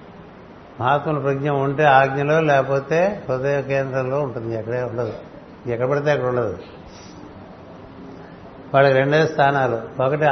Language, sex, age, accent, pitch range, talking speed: Telugu, male, 60-79, native, 125-145 Hz, 105 wpm